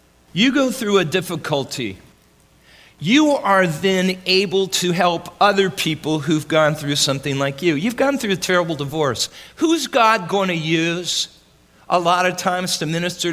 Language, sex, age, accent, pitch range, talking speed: English, male, 40-59, American, 155-215 Hz, 160 wpm